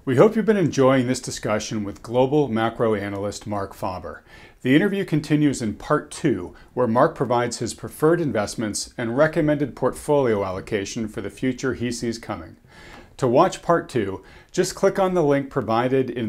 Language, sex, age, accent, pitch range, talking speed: English, male, 40-59, American, 105-145 Hz, 170 wpm